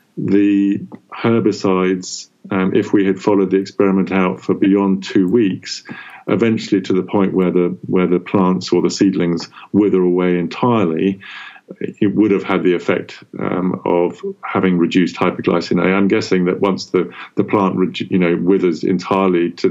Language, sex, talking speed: English, male, 160 wpm